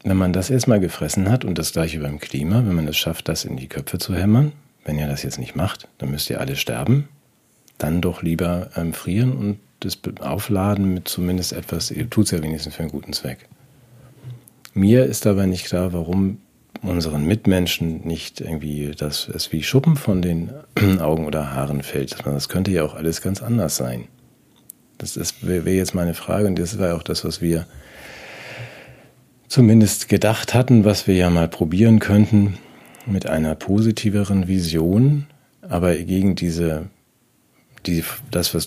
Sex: male